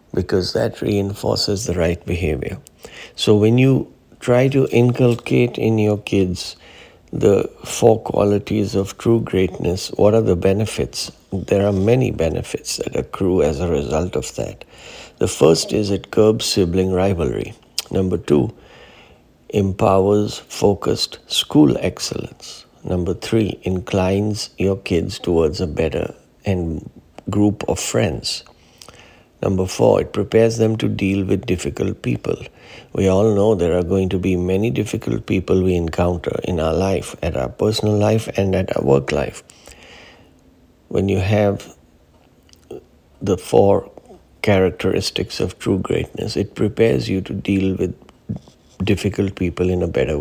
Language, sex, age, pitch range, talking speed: English, male, 60-79, 90-105 Hz, 140 wpm